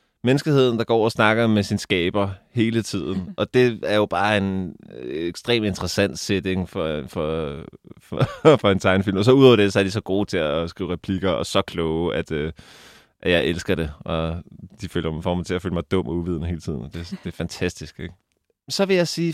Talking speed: 210 wpm